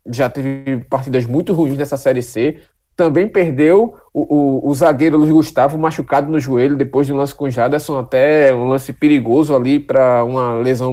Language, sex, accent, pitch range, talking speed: Portuguese, male, Brazilian, 135-185 Hz, 185 wpm